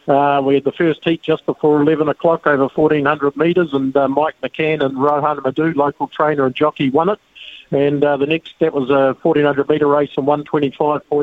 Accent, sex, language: Australian, male, English